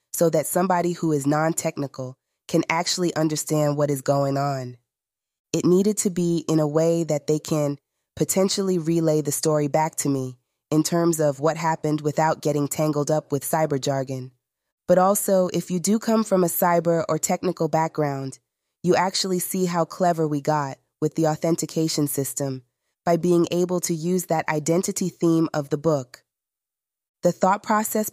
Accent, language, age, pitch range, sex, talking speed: American, English, 20-39, 150-180 Hz, female, 170 wpm